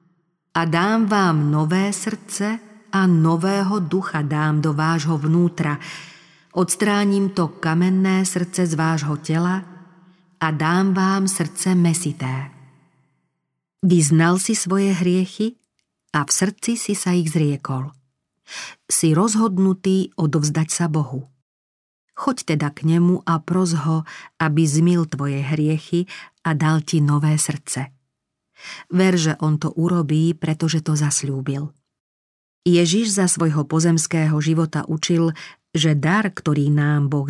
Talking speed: 120 wpm